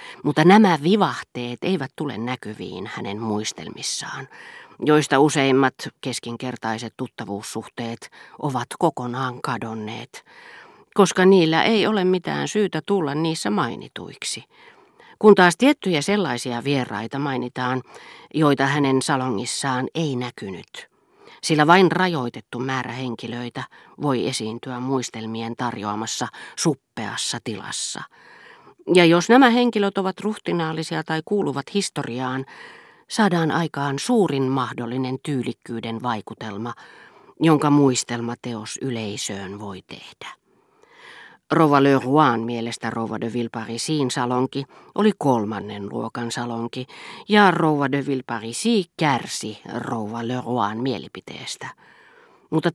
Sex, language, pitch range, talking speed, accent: female, Finnish, 120-170 Hz, 95 wpm, native